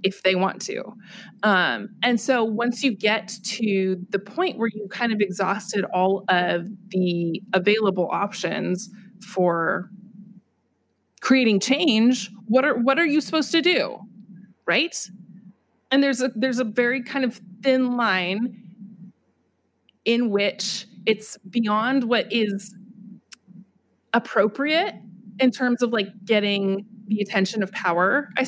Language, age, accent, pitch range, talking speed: English, 20-39, American, 190-225 Hz, 130 wpm